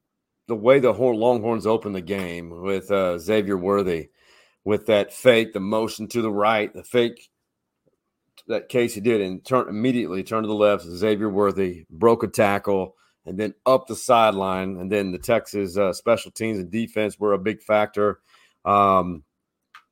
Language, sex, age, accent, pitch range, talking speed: English, male, 40-59, American, 100-120 Hz, 170 wpm